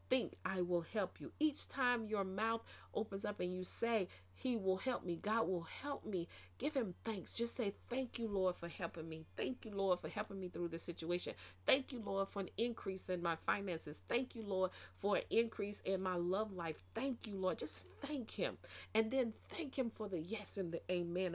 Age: 40-59